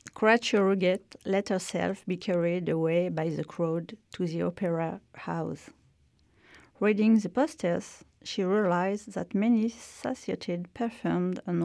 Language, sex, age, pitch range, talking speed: French, female, 40-59, 170-205 Hz, 120 wpm